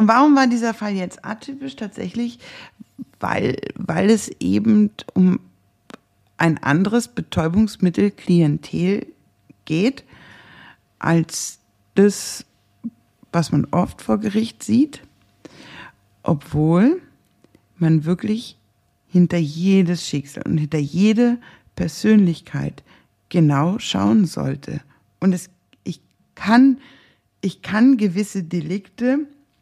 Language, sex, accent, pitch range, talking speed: German, female, German, 165-215 Hz, 90 wpm